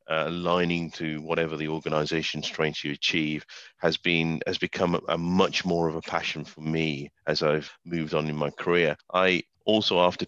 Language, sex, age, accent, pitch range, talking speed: English, male, 30-49, British, 80-90 Hz, 185 wpm